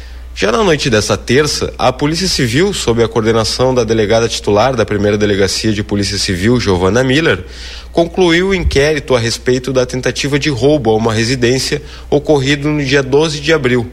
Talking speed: 170 wpm